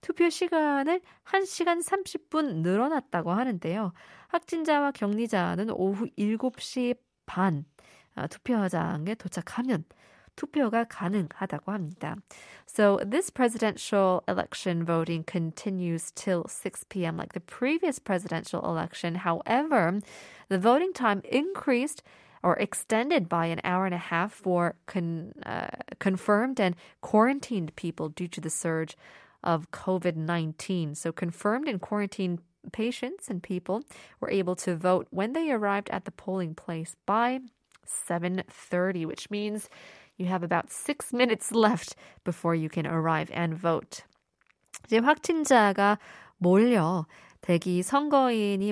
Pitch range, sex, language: 175-245 Hz, female, Korean